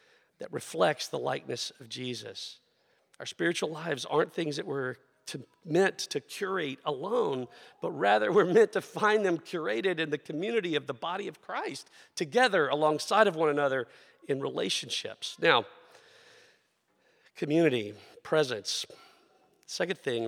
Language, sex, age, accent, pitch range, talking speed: English, male, 50-69, American, 145-225 Hz, 135 wpm